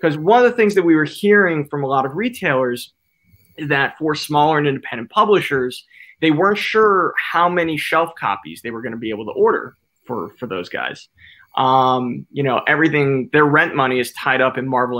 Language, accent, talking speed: English, American, 210 wpm